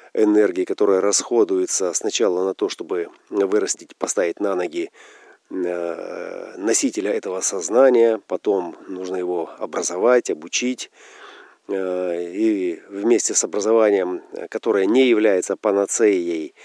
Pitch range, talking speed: 310-420 Hz, 95 wpm